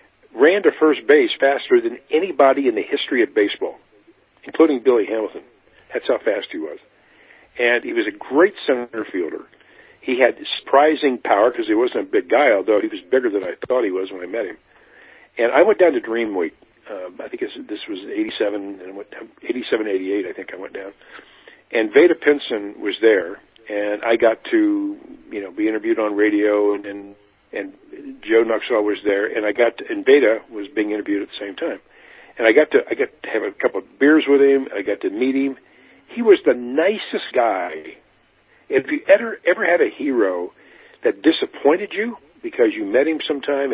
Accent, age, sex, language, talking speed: American, 50-69, male, English, 200 wpm